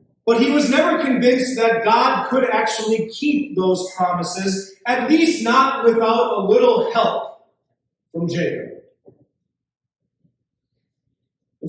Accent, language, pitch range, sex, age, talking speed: American, English, 160-235 Hz, male, 30-49, 115 wpm